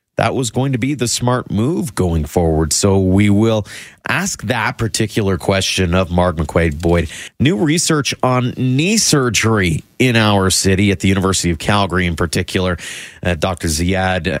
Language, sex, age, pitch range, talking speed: English, male, 30-49, 90-120 Hz, 165 wpm